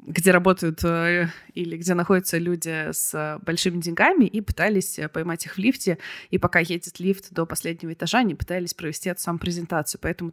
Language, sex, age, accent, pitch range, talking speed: Russian, female, 20-39, native, 170-200 Hz, 165 wpm